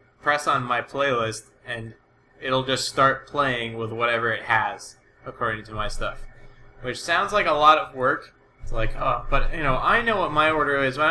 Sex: male